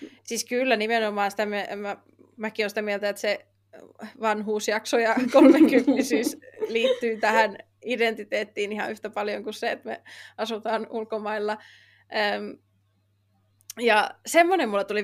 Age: 20-39